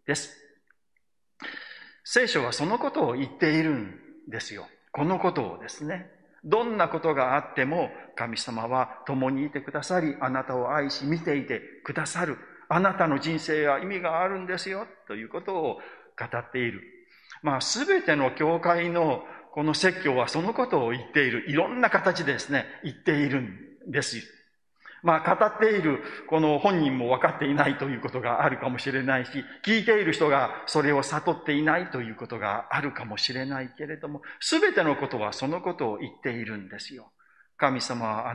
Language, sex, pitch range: Japanese, male, 135-185 Hz